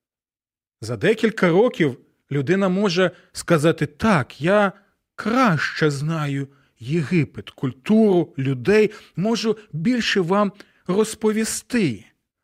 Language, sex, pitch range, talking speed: Ukrainian, male, 130-190 Hz, 80 wpm